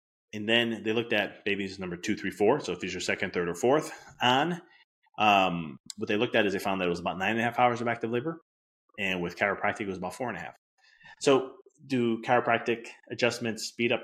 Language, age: English, 30-49